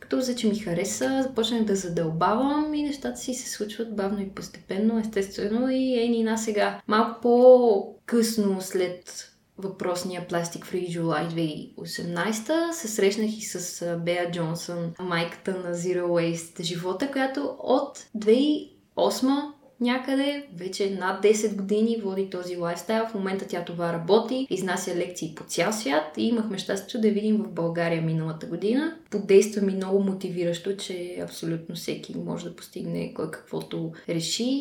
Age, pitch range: 20-39, 180-245 Hz